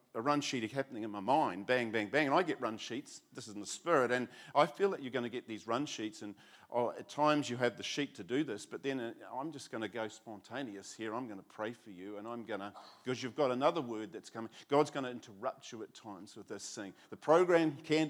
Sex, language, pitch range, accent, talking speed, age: male, English, 105-140 Hz, Australian, 265 wpm, 50-69